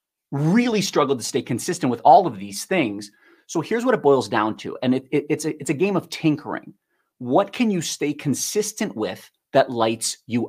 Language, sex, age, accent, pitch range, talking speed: English, male, 30-49, American, 125-170 Hz, 205 wpm